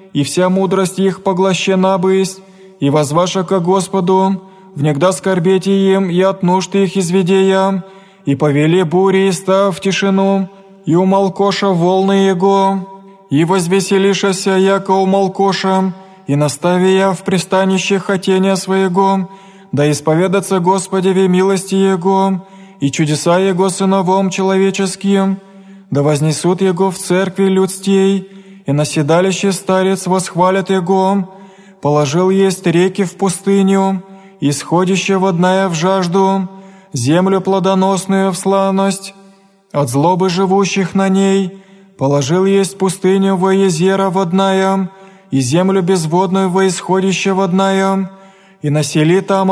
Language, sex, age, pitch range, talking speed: Greek, male, 20-39, 185-195 Hz, 115 wpm